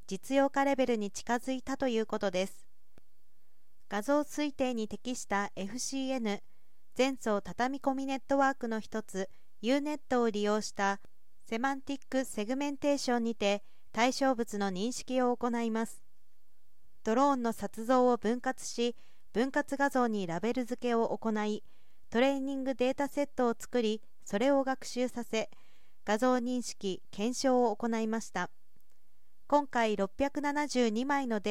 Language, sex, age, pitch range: Japanese, female, 40-59, 205-265 Hz